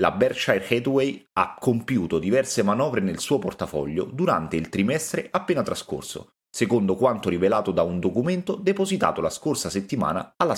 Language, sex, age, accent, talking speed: Italian, male, 30-49, native, 145 wpm